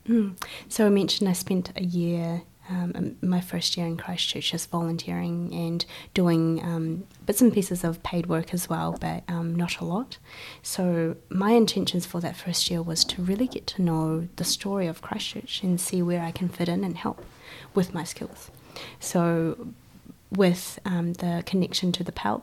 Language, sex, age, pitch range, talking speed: English, female, 20-39, 165-185 Hz, 185 wpm